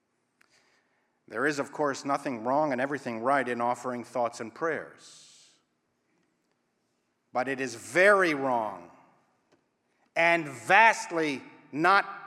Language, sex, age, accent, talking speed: English, male, 50-69, American, 110 wpm